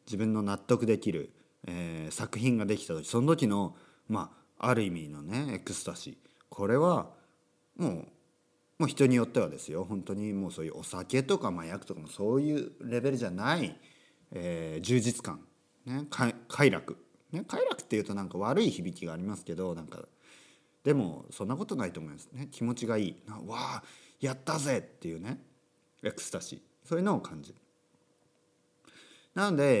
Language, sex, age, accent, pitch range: Japanese, male, 40-59, native, 95-140 Hz